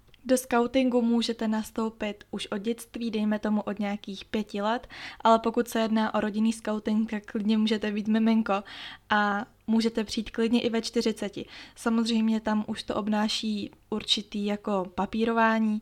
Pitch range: 210-230 Hz